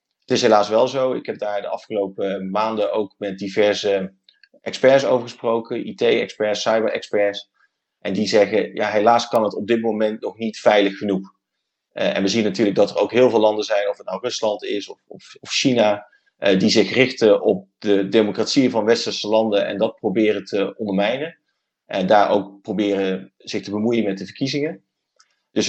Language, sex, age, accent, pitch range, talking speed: Dutch, male, 30-49, Dutch, 100-115 Hz, 185 wpm